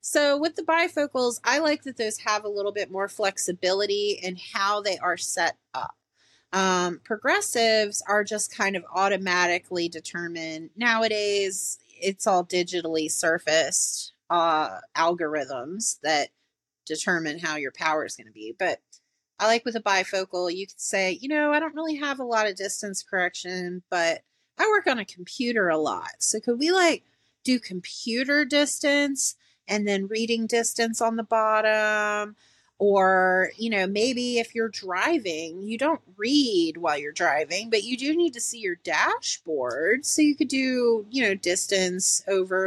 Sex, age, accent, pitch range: female, 30-49, American, 180-230 Hz